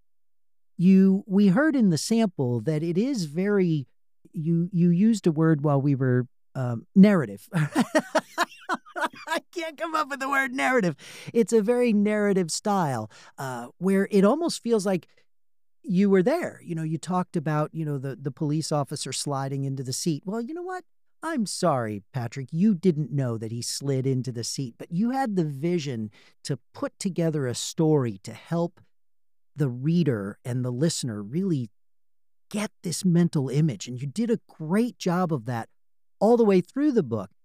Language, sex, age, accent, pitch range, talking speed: English, male, 50-69, American, 125-195 Hz, 175 wpm